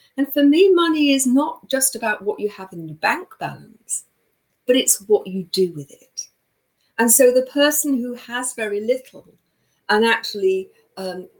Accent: British